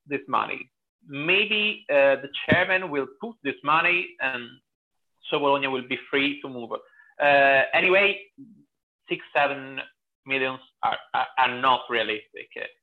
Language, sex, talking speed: Danish, male, 130 wpm